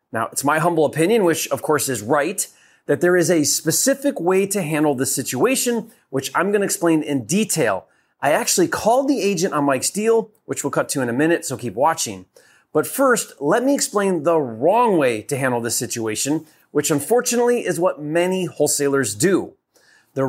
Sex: male